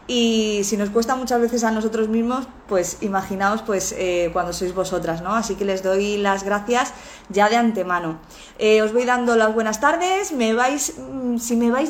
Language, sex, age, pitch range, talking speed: Spanish, female, 20-39, 195-240 Hz, 190 wpm